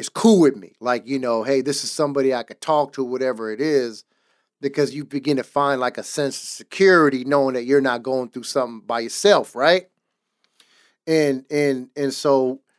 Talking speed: 190 wpm